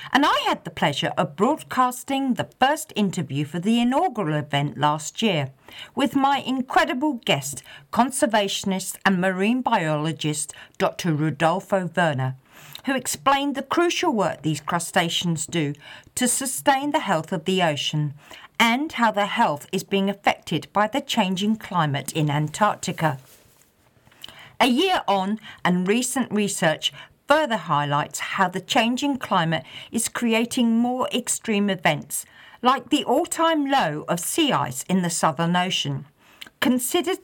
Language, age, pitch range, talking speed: English, 50-69, 155-250 Hz, 135 wpm